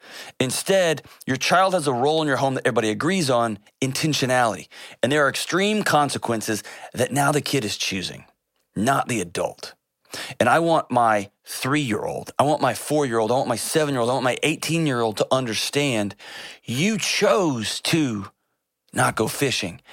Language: English